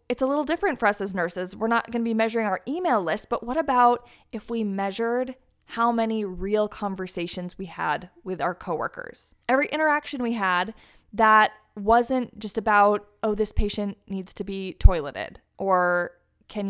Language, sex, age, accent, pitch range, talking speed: English, female, 20-39, American, 195-245 Hz, 175 wpm